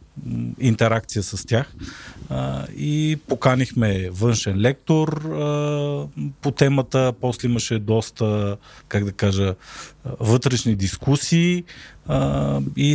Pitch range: 110-135 Hz